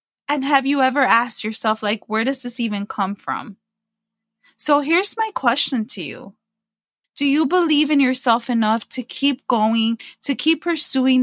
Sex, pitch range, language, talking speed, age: female, 220-270 Hz, English, 165 wpm, 20-39